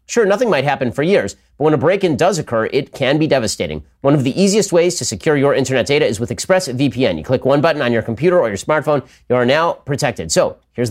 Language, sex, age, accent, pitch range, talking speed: English, male, 40-59, American, 115-150 Hz, 250 wpm